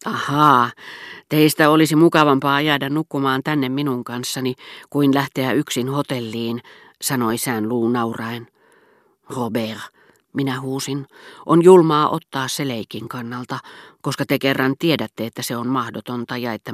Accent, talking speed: native, 130 wpm